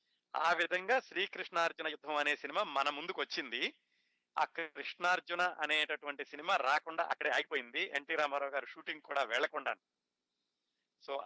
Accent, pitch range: native, 130-175 Hz